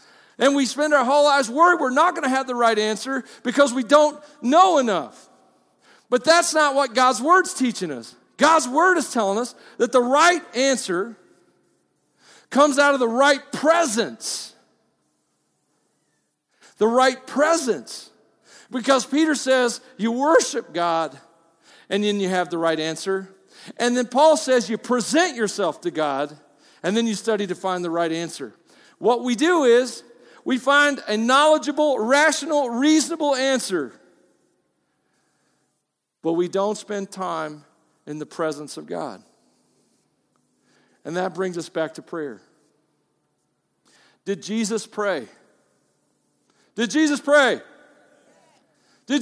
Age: 50-69